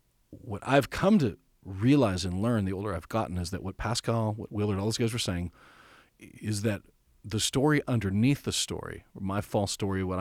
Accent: American